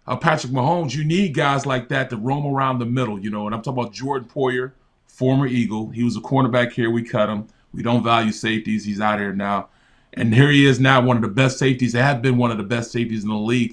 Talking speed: 260 wpm